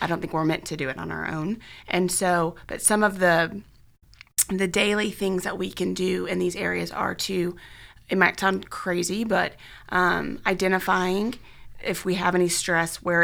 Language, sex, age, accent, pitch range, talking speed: English, female, 30-49, American, 160-185 Hz, 190 wpm